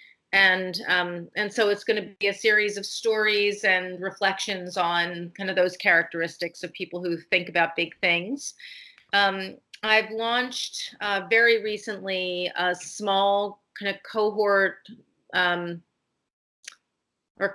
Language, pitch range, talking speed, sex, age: English, 185-220 Hz, 135 wpm, female, 40-59